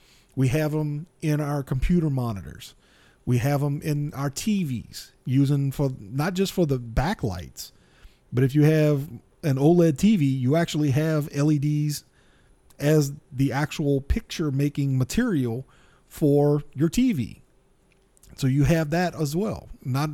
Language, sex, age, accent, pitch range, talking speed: English, male, 40-59, American, 140-170 Hz, 140 wpm